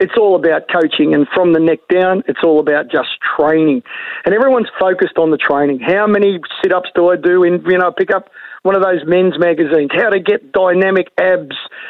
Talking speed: 205 wpm